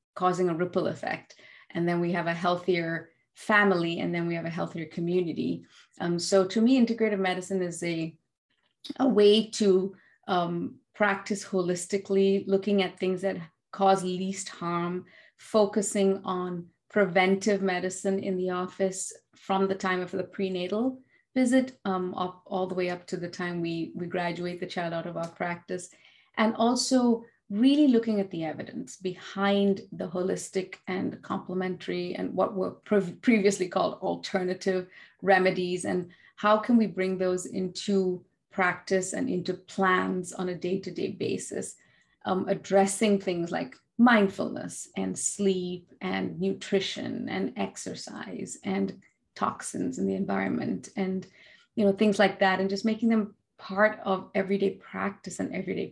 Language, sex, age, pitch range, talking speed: English, female, 30-49, 180-200 Hz, 150 wpm